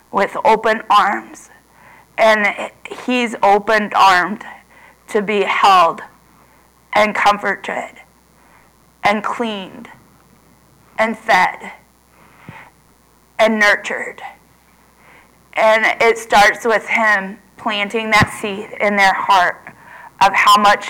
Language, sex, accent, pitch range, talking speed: English, female, American, 195-220 Hz, 90 wpm